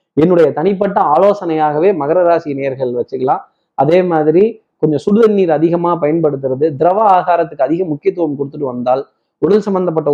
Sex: male